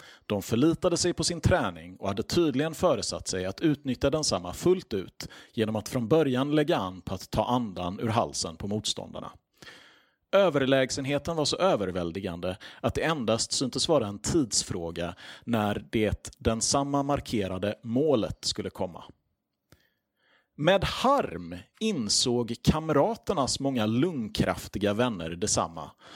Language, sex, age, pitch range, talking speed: Swedish, male, 30-49, 105-150 Hz, 135 wpm